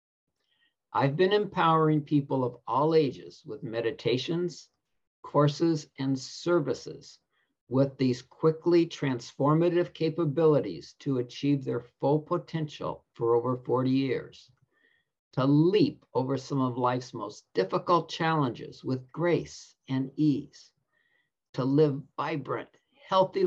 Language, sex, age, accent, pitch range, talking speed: English, male, 50-69, American, 135-170 Hz, 110 wpm